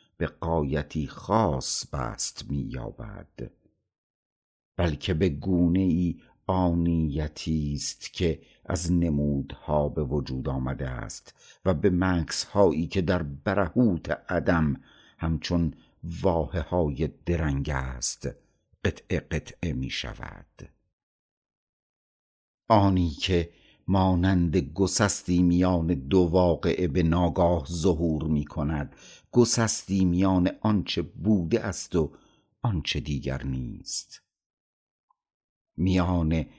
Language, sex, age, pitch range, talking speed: Persian, male, 50-69, 75-95 Hz, 85 wpm